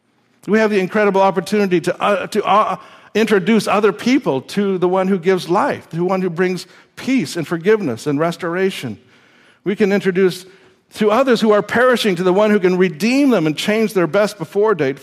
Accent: American